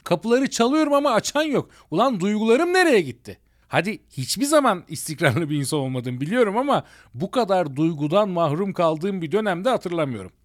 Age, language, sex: 40-59, Turkish, male